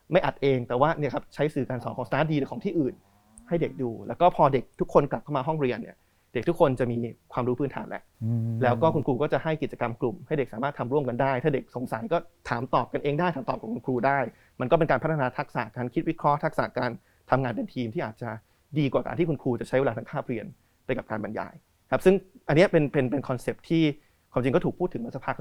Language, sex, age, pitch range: Thai, male, 20-39, 120-150 Hz